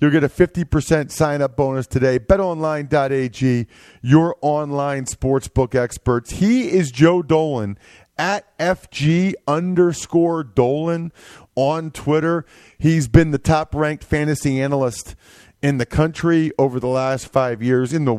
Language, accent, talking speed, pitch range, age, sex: English, American, 125 wpm, 125-165 Hz, 40-59, male